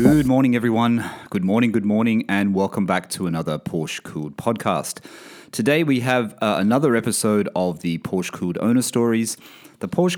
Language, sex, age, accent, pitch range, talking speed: English, male, 30-49, Australian, 90-115 Hz, 170 wpm